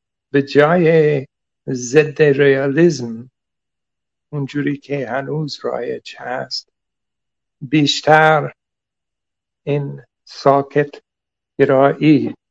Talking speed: 60 wpm